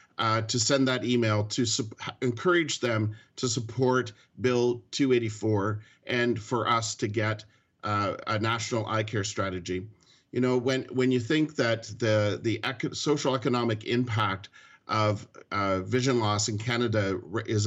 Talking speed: 150 wpm